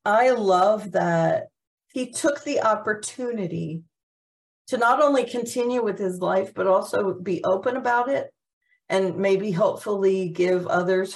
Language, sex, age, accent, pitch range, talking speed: English, female, 50-69, American, 165-210 Hz, 135 wpm